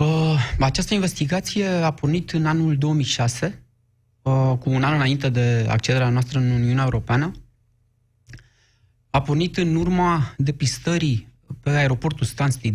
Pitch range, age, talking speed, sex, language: 115-150 Hz, 20-39, 120 wpm, male, Romanian